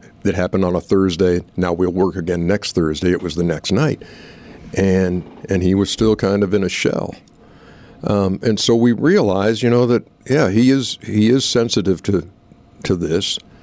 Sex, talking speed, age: male, 190 wpm, 60-79